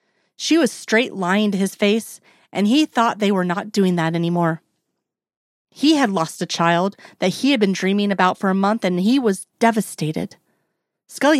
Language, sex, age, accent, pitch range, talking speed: English, female, 30-49, American, 185-230 Hz, 185 wpm